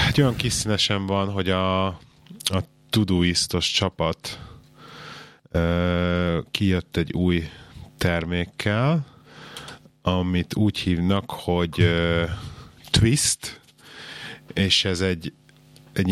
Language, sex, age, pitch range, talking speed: Hungarian, male, 30-49, 90-110 Hz, 80 wpm